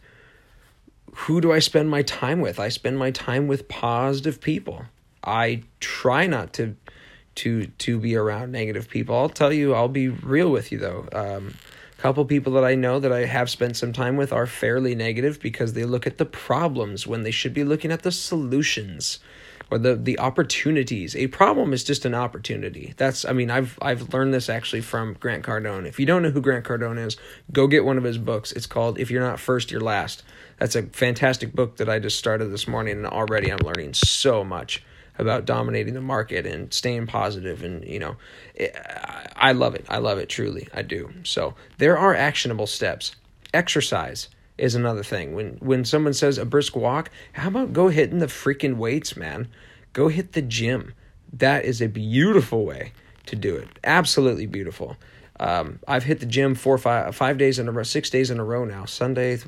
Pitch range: 115-140 Hz